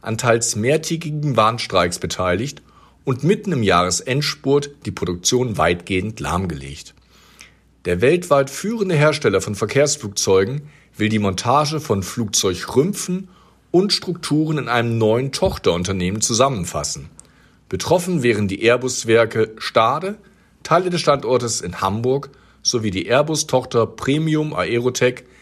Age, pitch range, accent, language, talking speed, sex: 50-69, 95-145 Hz, German, German, 110 wpm, male